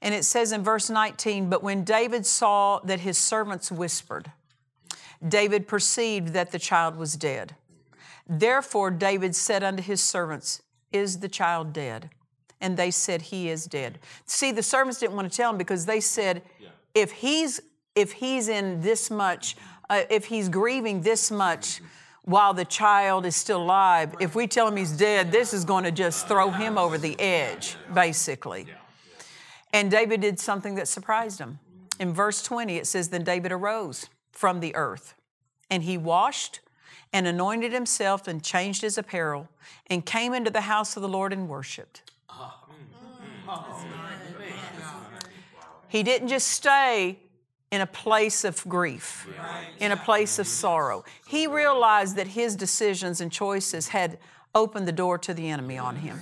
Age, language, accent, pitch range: 50-69, English, American, 175-215 Hz